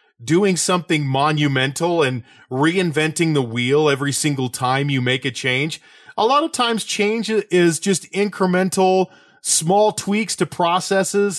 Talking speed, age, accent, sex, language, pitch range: 135 wpm, 40-59, American, male, English, 140-190 Hz